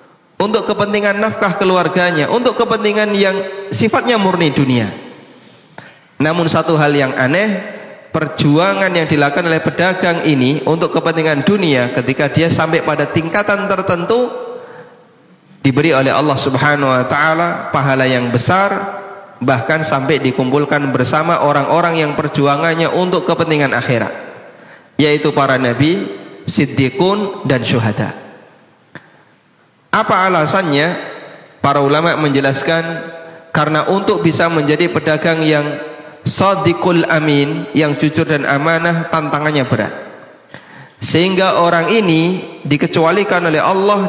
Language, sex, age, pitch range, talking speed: Indonesian, male, 30-49, 140-175 Hz, 110 wpm